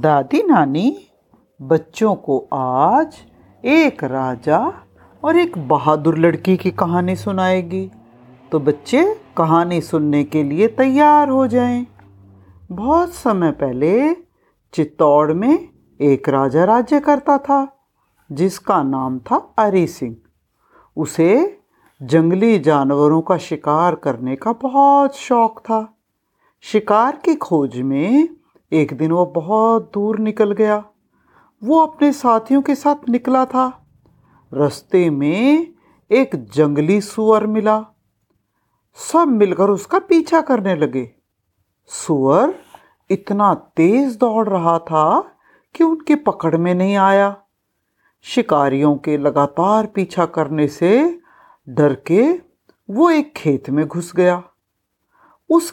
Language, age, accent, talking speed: Hindi, 50-69, native, 115 wpm